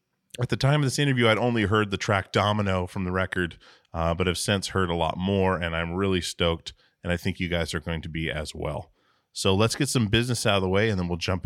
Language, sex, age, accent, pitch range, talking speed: English, male, 30-49, American, 85-105 Hz, 265 wpm